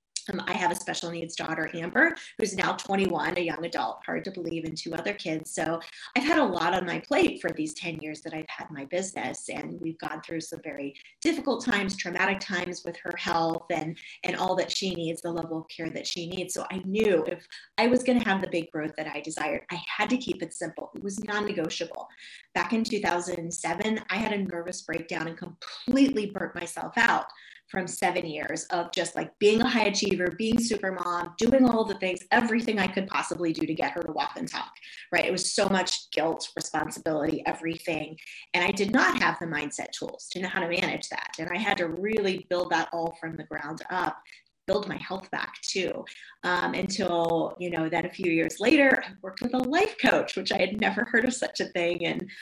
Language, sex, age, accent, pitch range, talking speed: English, female, 30-49, American, 165-205 Hz, 220 wpm